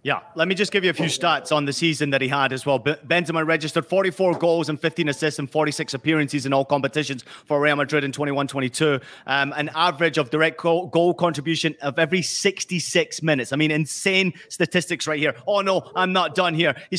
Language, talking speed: English, 205 wpm